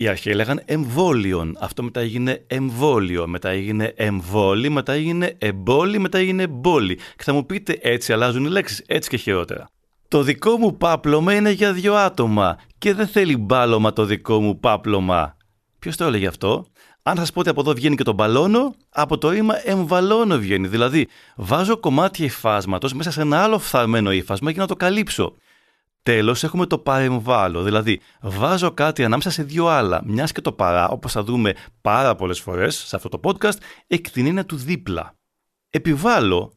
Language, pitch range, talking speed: Greek, 105-160 Hz, 175 wpm